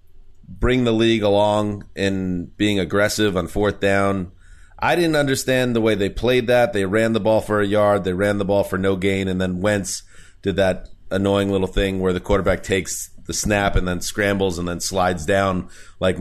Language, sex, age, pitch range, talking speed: English, male, 30-49, 95-120 Hz, 200 wpm